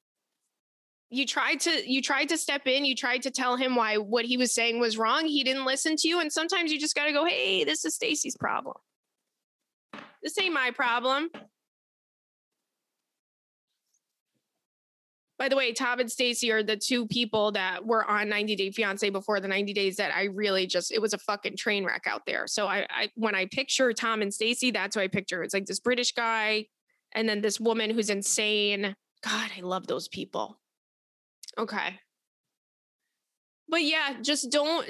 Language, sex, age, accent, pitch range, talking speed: English, female, 20-39, American, 210-260 Hz, 185 wpm